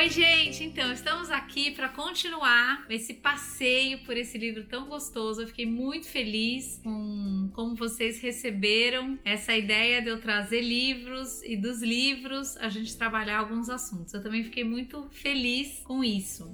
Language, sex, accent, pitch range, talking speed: Portuguese, female, Brazilian, 220-255 Hz, 155 wpm